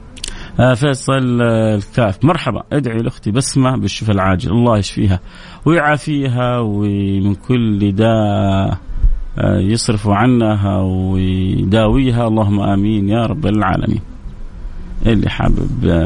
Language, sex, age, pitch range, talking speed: Arabic, male, 30-49, 100-125 Hz, 90 wpm